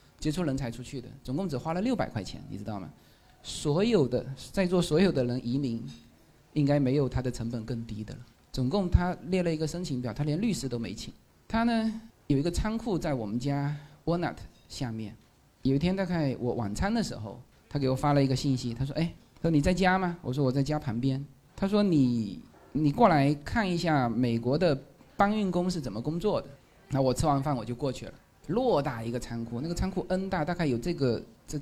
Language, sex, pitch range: Chinese, male, 125-175 Hz